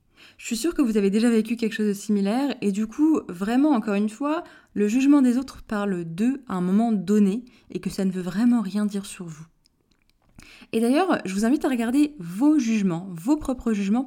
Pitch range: 195-245 Hz